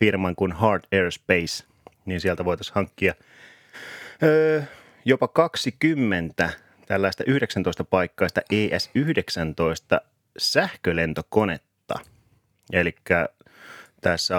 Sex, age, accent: male, 30-49, native